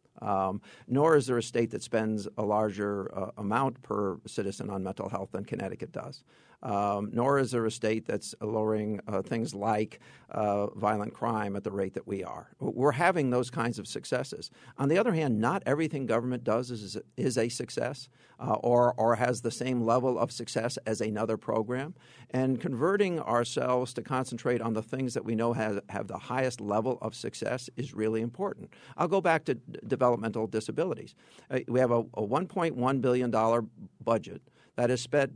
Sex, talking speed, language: male, 185 wpm, English